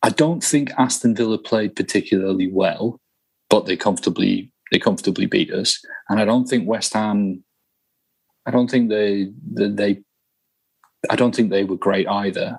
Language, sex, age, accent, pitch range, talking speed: English, male, 30-49, British, 100-125 Hz, 160 wpm